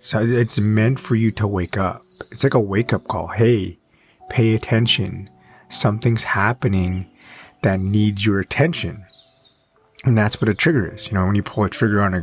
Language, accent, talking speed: English, American, 180 wpm